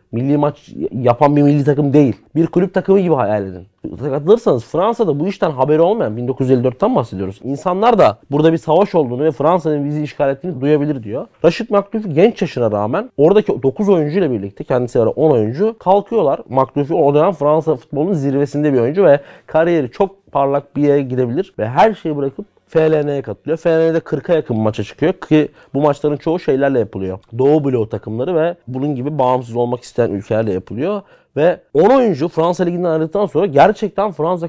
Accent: native